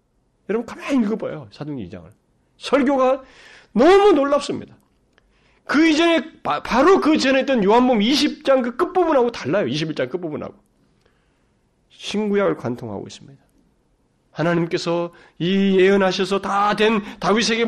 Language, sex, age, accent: Korean, male, 40-59, native